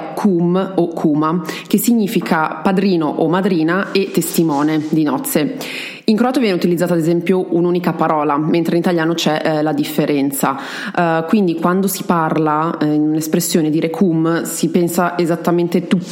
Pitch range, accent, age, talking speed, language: 160-185 Hz, native, 30-49, 140 wpm, Italian